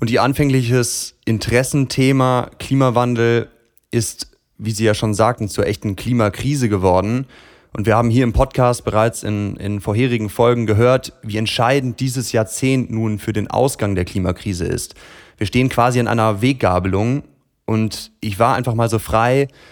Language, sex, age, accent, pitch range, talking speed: German, male, 30-49, German, 110-130 Hz, 155 wpm